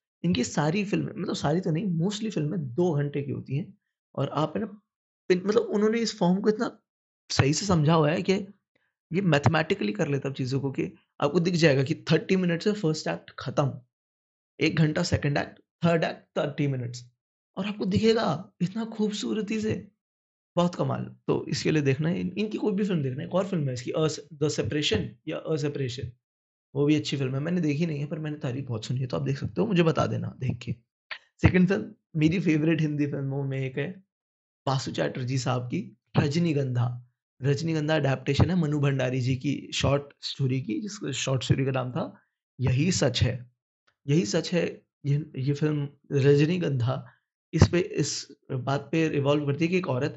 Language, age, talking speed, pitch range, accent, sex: Hindi, 20-39, 150 wpm, 135-180 Hz, native, male